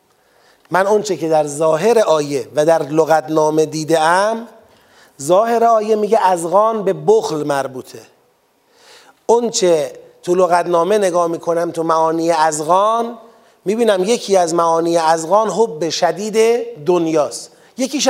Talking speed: 125 wpm